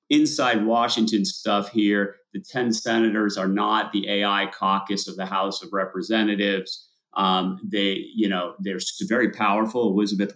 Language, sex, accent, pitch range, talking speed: English, male, American, 100-120 Hz, 145 wpm